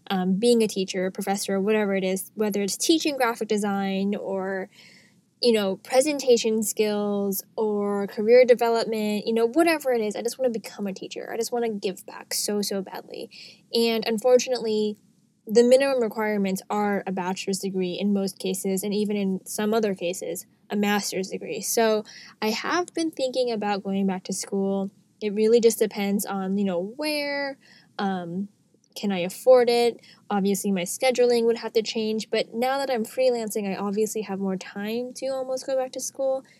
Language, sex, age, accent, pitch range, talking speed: English, female, 10-29, American, 195-240 Hz, 180 wpm